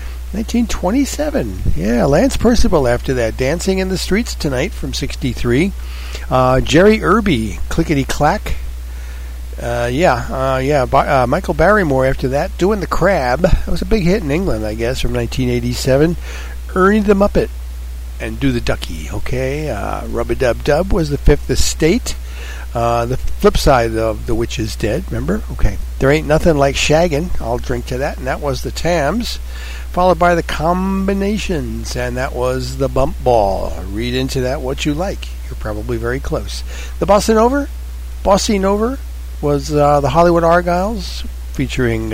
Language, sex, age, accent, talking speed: English, male, 60-79, American, 160 wpm